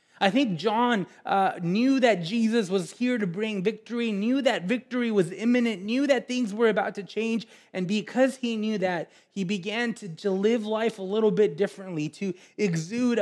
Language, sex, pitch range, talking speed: English, male, 160-215 Hz, 185 wpm